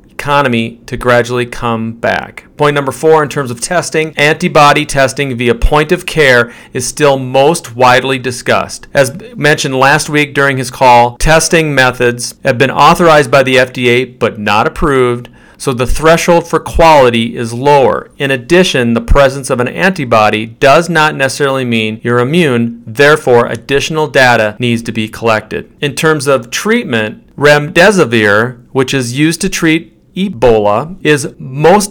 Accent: American